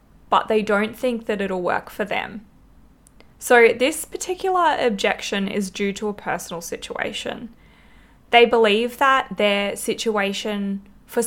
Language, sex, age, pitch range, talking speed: English, female, 20-39, 200-235 Hz, 135 wpm